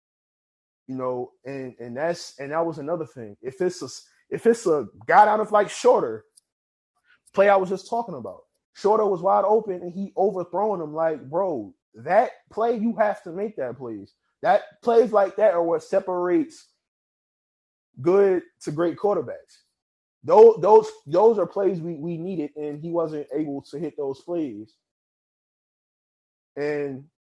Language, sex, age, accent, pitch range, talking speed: English, male, 30-49, American, 140-200 Hz, 160 wpm